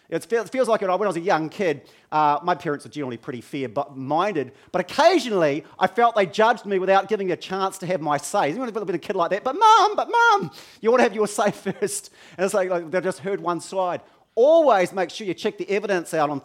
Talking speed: 260 wpm